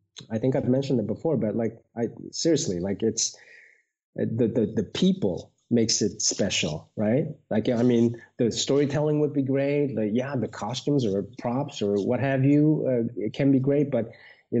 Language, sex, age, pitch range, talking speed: English, male, 30-49, 110-140 Hz, 185 wpm